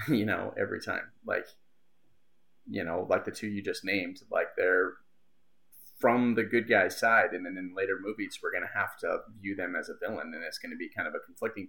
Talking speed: 225 wpm